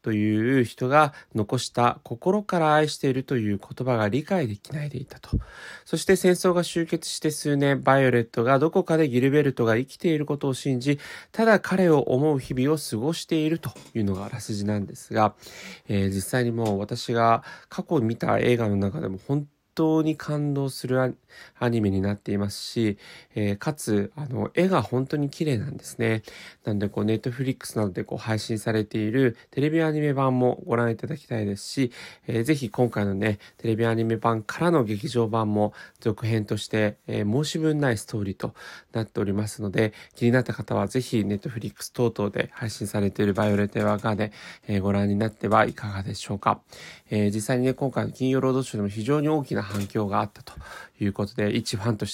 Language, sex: Japanese, male